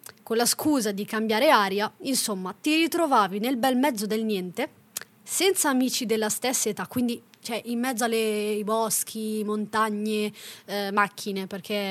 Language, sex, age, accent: Italian, female, 20-39, native